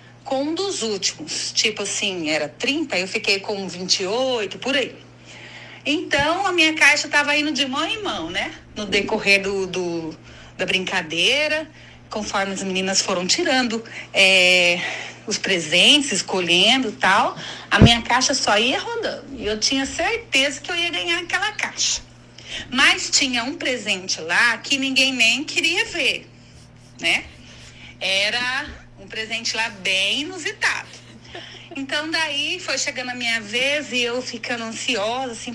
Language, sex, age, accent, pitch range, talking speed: Portuguese, female, 40-59, Brazilian, 205-290 Hz, 140 wpm